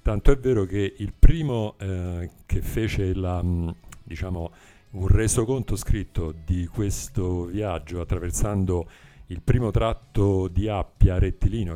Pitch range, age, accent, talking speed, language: 90-110 Hz, 50-69, native, 110 wpm, Italian